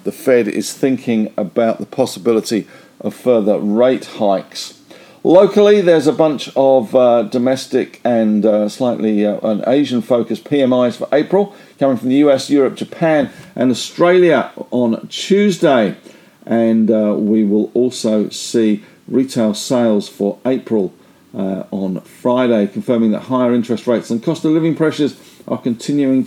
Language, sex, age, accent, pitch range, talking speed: English, male, 50-69, British, 110-145 Hz, 140 wpm